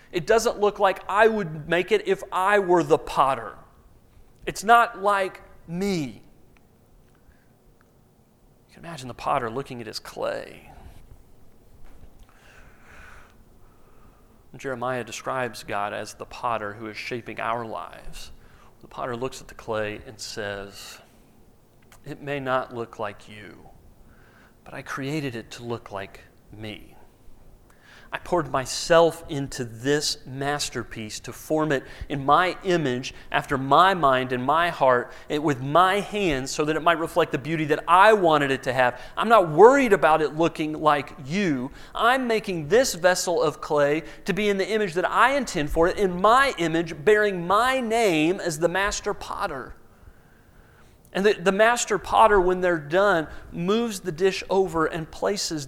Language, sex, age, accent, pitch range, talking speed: English, male, 40-59, American, 125-190 Hz, 150 wpm